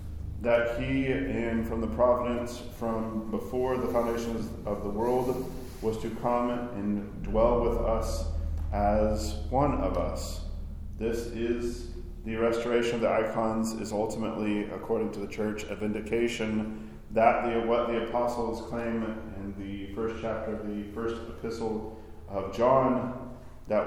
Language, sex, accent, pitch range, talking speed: English, male, American, 105-115 Hz, 140 wpm